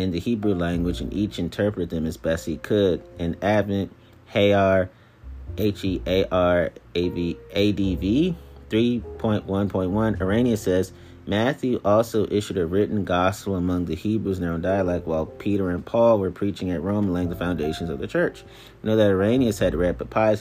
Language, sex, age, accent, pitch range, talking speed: English, male, 30-49, American, 85-100 Hz, 155 wpm